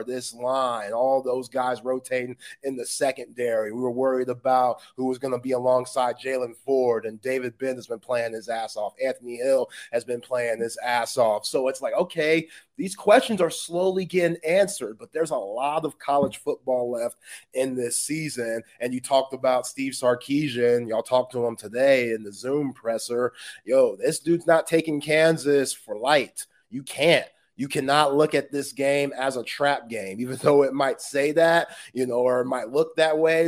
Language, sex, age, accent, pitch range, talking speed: English, male, 30-49, American, 125-155 Hz, 195 wpm